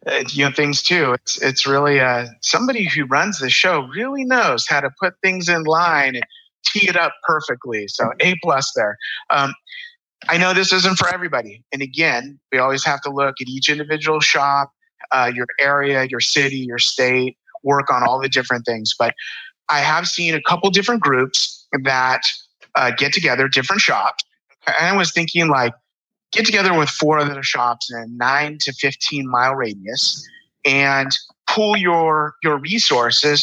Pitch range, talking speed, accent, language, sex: 130-170 Hz, 180 wpm, American, English, male